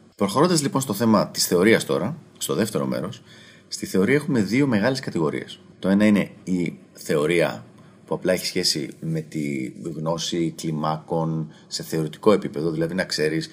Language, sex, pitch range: Greek, male, 85-140 Hz